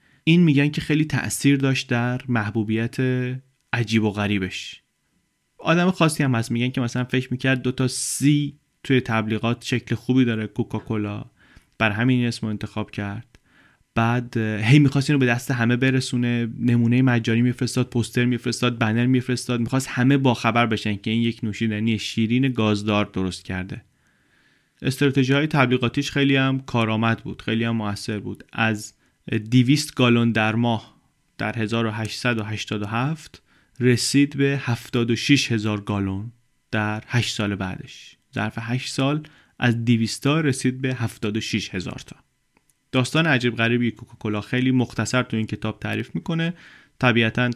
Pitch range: 110-130 Hz